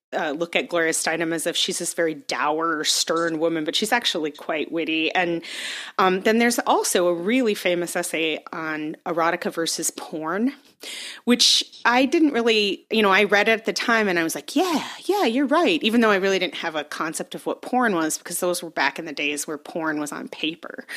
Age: 30-49